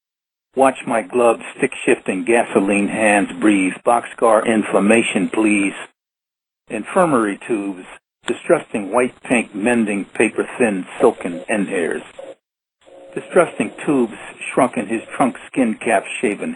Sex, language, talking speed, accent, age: male, English, 100 wpm, American, 60-79